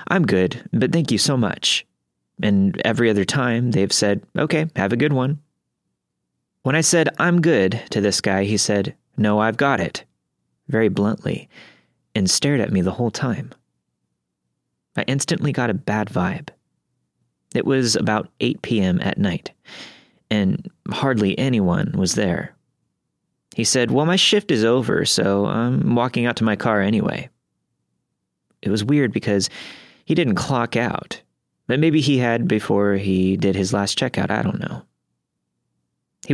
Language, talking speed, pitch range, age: English, 155 wpm, 95-135 Hz, 30-49